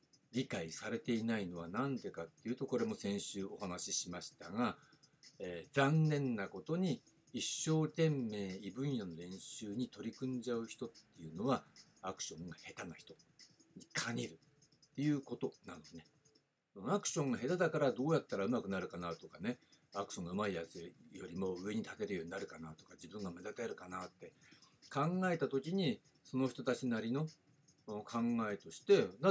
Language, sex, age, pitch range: Japanese, male, 60-79, 100-160 Hz